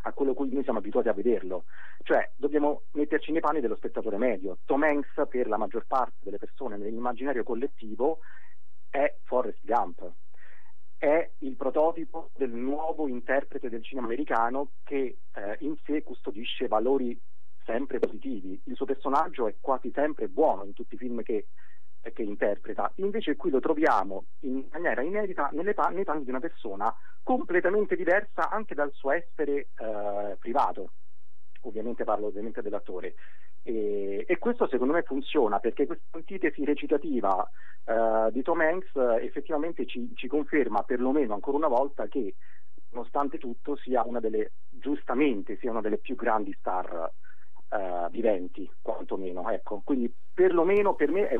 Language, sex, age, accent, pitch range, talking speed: Italian, male, 40-59, native, 120-160 Hz, 145 wpm